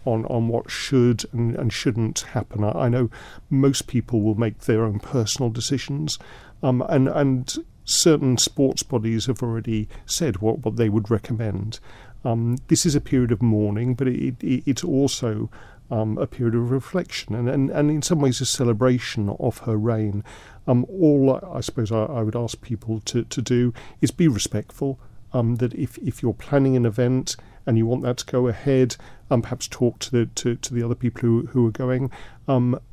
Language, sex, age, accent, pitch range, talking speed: English, male, 50-69, British, 115-130 Hz, 190 wpm